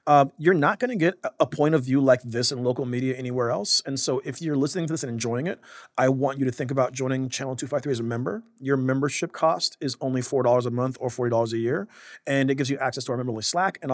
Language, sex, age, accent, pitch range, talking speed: English, male, 40-59, American, 125-150 Hz, 265 wpm